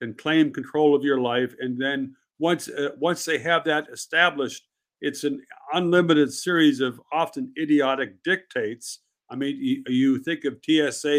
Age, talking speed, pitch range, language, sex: 50-69, 155 wpm, 125-150 Hz, English, male